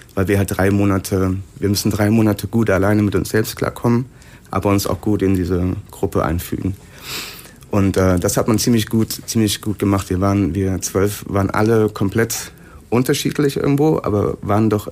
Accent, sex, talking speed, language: German, male, 180 wpm, German